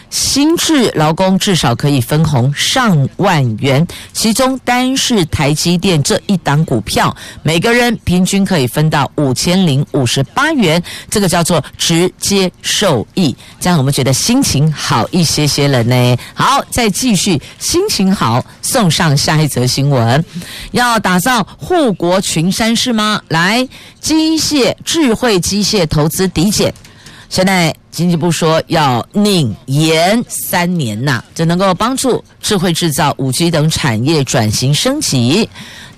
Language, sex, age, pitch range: Chinese, female, 50-69, 135-195 Hz